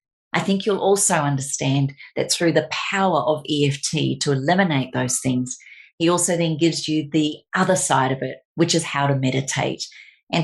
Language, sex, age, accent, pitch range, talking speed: English, female, 40-59, Australian, 140-170 Hz, 180 wpm